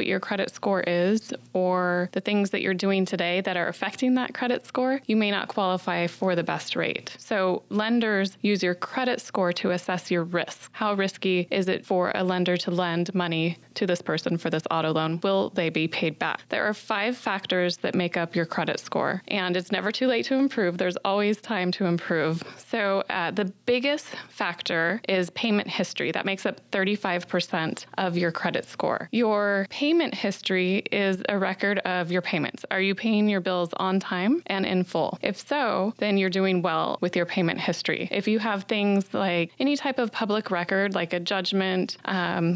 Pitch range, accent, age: 180-215 Hz, American, 20-39